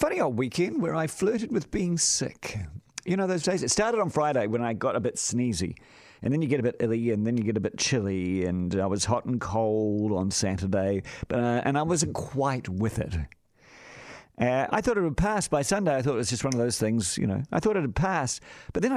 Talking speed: 245 wpm